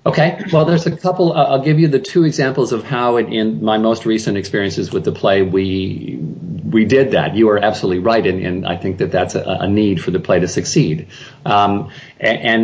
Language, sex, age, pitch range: English, male, 50-69, 100-135 Hz